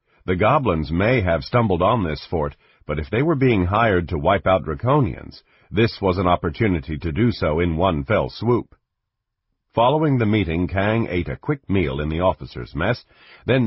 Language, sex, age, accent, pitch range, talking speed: English, male, 50-69, American, 85-110 Hz, 185 wpm